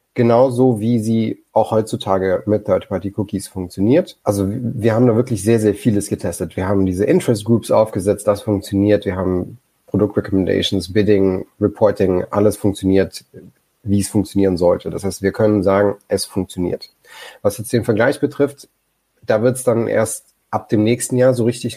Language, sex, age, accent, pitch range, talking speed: German, male, 30-49, German, 95-110 Hz, 160 wpm